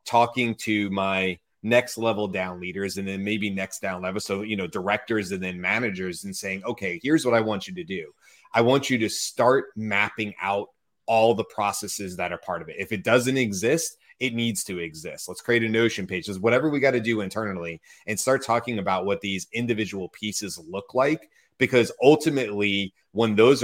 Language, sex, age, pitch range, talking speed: English, male, 30-49, 100-125 Hz, 200 wpm